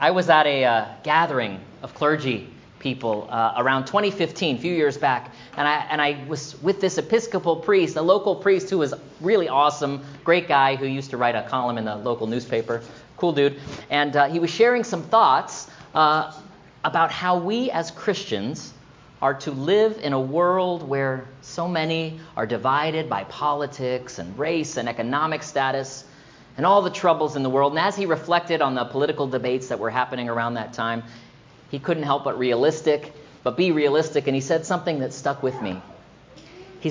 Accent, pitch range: American, 130-170 Hz